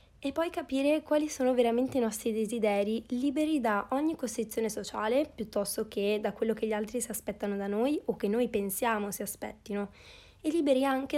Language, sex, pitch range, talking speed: Italian, female, 210-255 Hz, 185 wpm